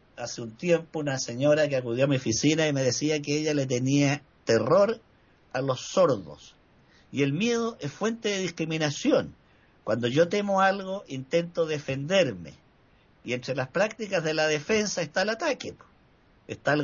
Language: Spanish